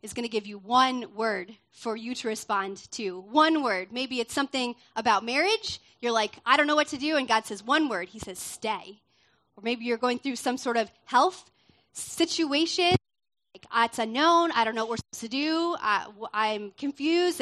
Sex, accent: female, American